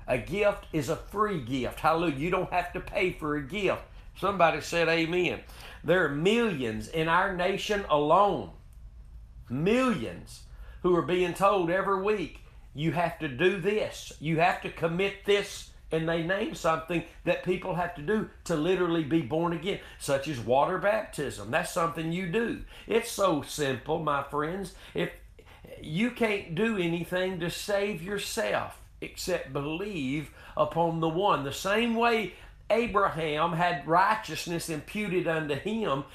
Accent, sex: American, male